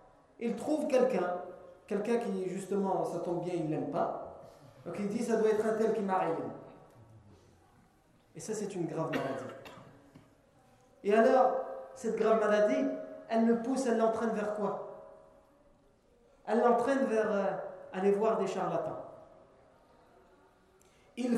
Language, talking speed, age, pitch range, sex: French, 140 wpm, 40-59, 150-215 Hz, male